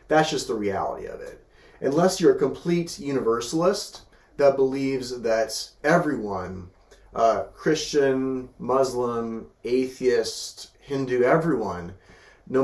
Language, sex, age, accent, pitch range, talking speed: English, male, 30-49, American, 120-185 Hz, 105 wpm